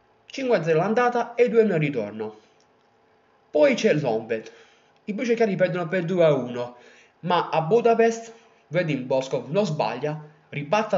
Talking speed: 130 wpm